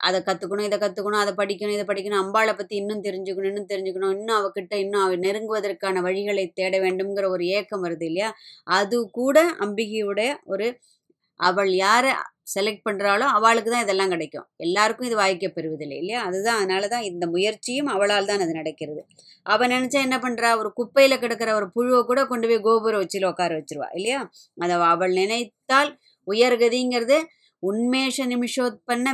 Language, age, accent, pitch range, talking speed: Tamil, 20-39, native, 190-240 Hz, 150 wpm